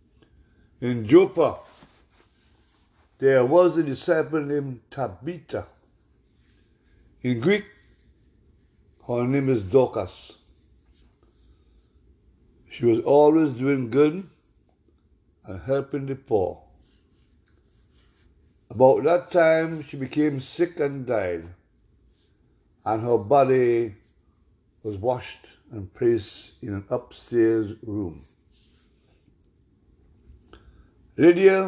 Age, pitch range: 60-79, 95-150 Hz